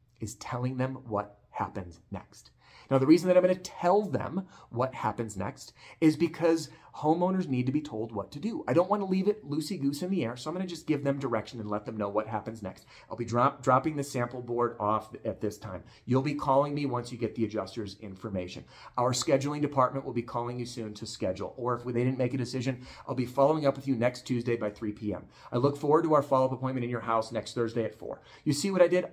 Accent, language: American, English